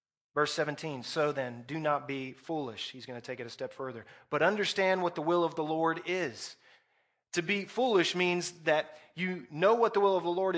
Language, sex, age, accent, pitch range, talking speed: English, male, 30-49, American, 135-180 Hz, 215 wpm